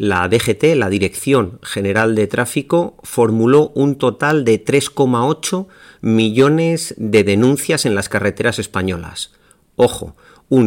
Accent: Spanish